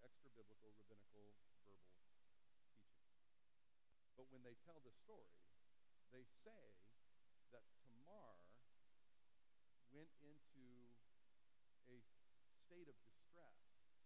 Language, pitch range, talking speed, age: English, 105-130 Hz, 85 wpm, 50-69